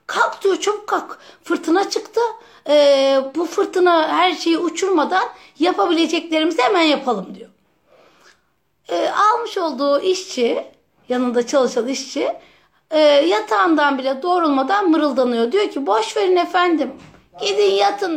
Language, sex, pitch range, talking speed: Turkish, female, 275-360 Hz, 110 wpm